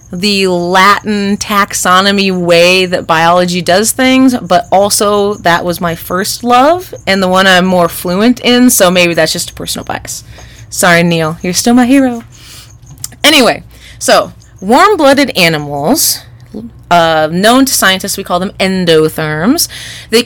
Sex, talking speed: female, 140 wpm